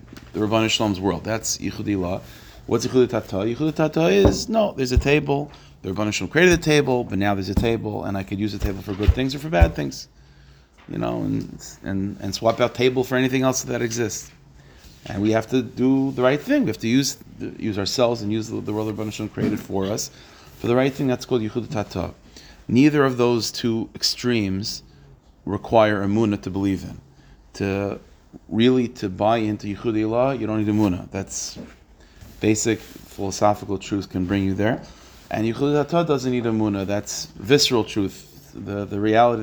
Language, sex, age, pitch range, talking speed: English, male, 30-49, 100-120 Hz, 185 wpm